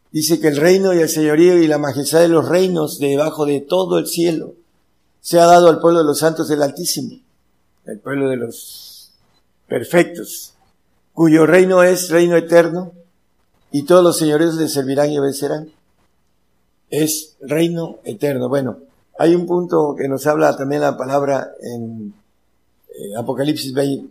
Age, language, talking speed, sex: 50-69, Spanish, 155 wpm, male